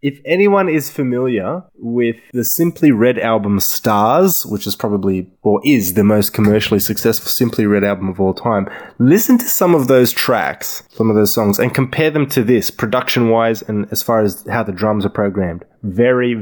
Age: 20-39